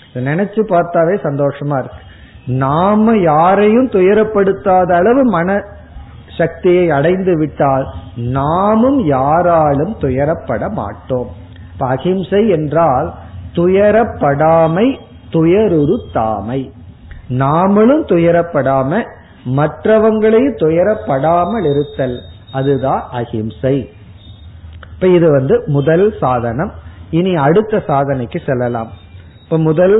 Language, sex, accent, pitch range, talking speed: Tamil, male, native, 125-180 Hz, 65 wpm